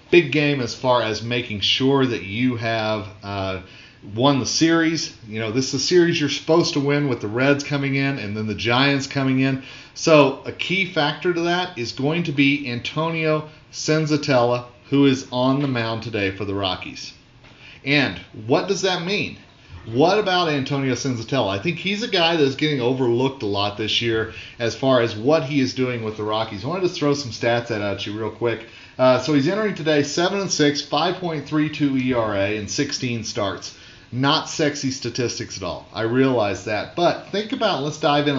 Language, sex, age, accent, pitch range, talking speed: English, male, 40-59, American, 115-150 Hz, 190 wpm